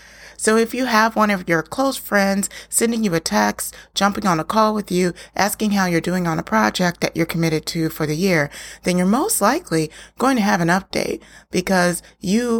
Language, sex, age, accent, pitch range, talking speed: English, female, 30-49, American, 165-210 Hz, 210 wpm